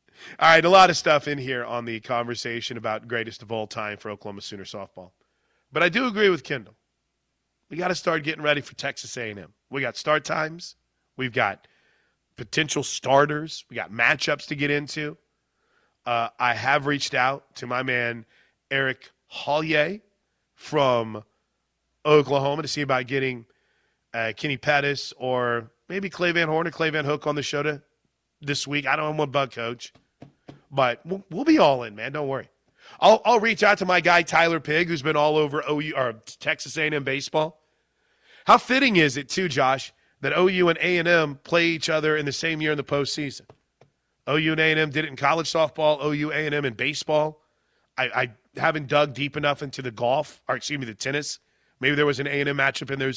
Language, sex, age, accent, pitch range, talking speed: English, male, 30-49, American, 125-155 Hz, 190 wpm